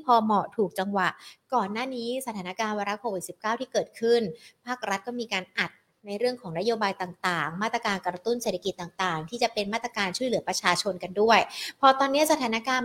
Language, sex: Thai, female